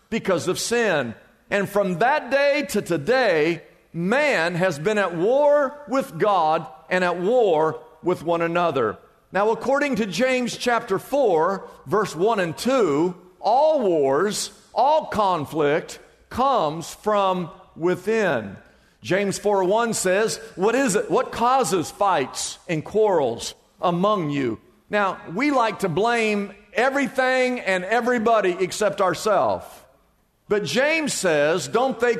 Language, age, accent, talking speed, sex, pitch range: English, 50-69, American, 125 wpm, male, 175-235 Hz